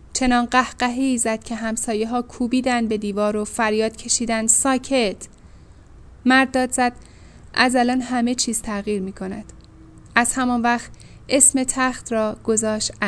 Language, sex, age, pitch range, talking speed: Persian, female, 10-29, 195-240 Hz, 140 wpm